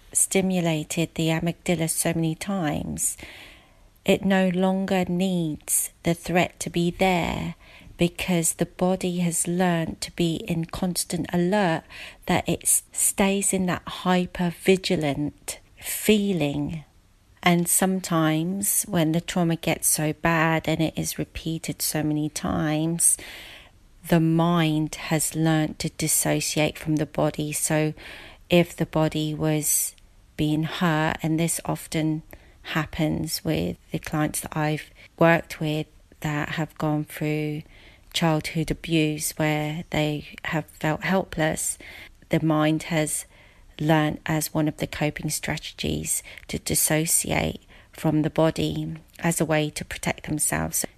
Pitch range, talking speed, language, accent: 150-170 Hz, 125 wpm, English, British